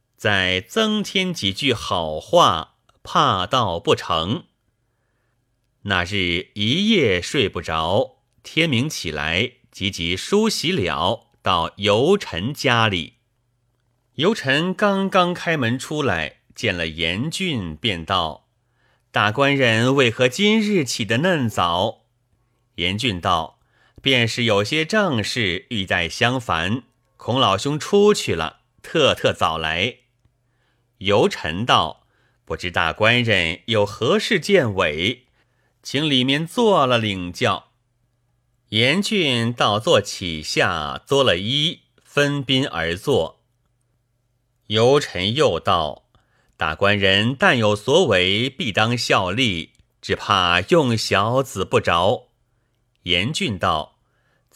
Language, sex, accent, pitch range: Chinese, male, native, 105-135 Hz